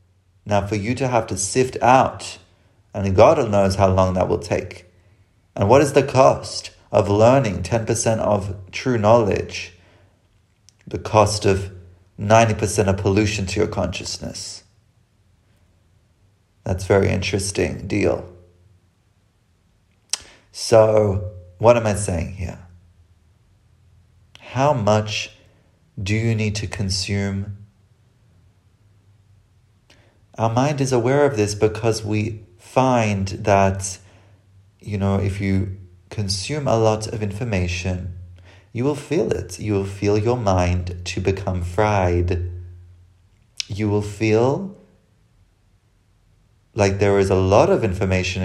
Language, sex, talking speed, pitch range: English, male, 120 wpm, 95-110 Hz